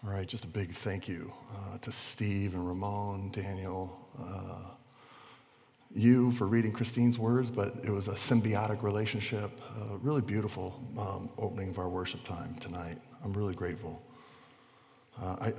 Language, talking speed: English, 160 wpm